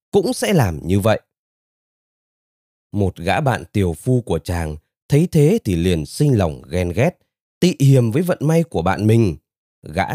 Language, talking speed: Vietnamese, 170 wpm